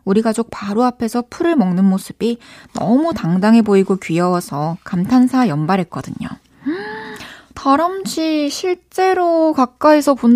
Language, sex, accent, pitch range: Korean, female, native, 195-255 Hz